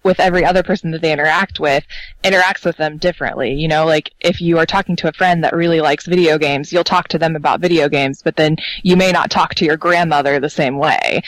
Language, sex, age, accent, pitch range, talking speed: English, female, 20-39, American, 155-180 Hz, 245 wpm